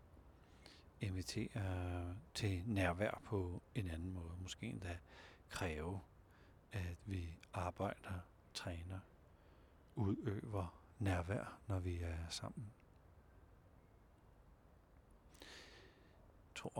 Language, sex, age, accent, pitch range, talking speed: Danish, male, 60-79, native, 85-105 Hz, 75 wpm